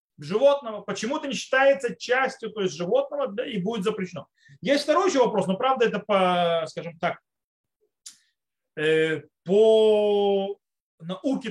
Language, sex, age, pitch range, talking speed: Russian, male, 30-49, 175-255 Hz, 130 wpm